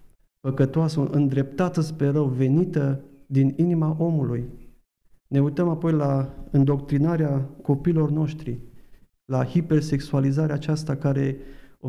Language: Romanian